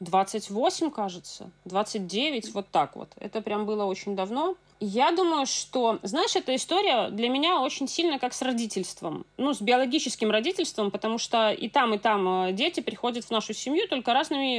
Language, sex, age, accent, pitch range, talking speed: Russian, female, 30-49, native, 210-280 Hz, 170 wpm